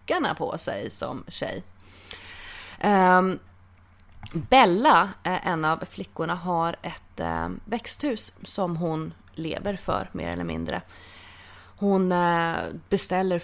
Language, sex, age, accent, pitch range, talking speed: English, female, 20-39, Swedish, 145-185 Hz, 90 wpm